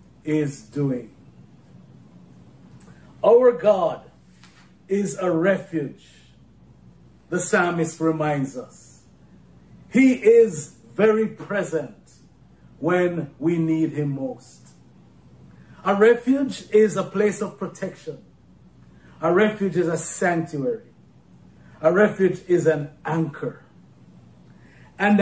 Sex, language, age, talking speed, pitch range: male, English, 40-59, 90 wpm, 150-225 Hz